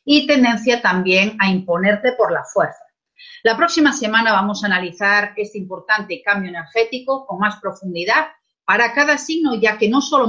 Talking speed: 165 wpm